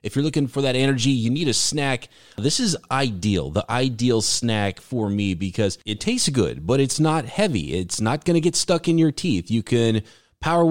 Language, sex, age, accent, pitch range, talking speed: English, male, 30-49, American, 110-150 Hz, 215 wpm